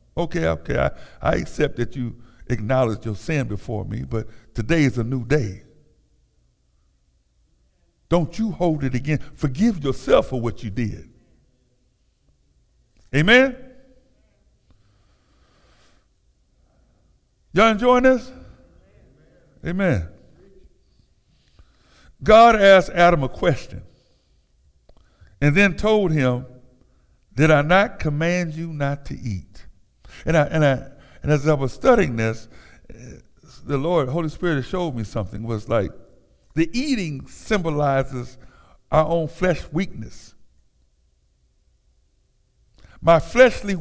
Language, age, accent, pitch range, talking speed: English, 60-79, American, 110-175 Hz, 110 wpm